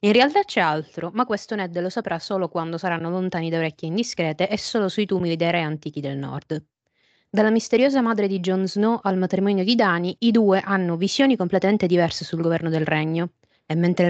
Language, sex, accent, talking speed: Italian, female, native, 200 wpm